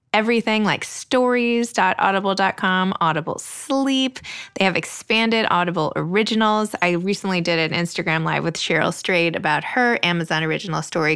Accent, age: American, 20-39